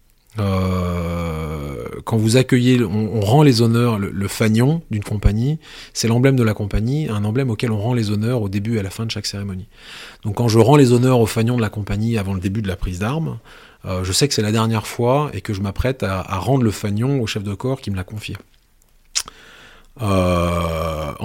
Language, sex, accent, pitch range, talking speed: French, male, French, 95-120 Hz, 225 wpm